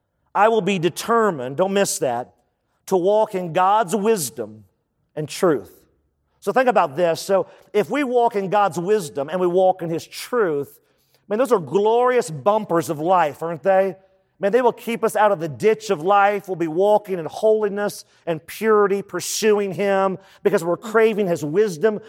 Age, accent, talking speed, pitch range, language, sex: 40-59, American, 175 wpm, 160-220 Hz, English, male